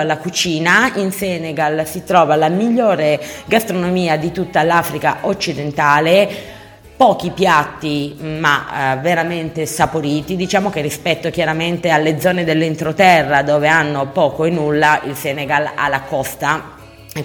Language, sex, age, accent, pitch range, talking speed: Italian, female, 30-49, native, 140-175 Hz, 130 wpm